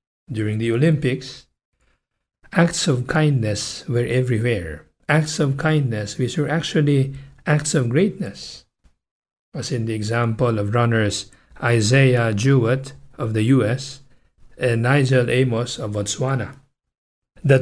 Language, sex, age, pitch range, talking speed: English, male, 50-69, 115-140 Hz, 115 wpm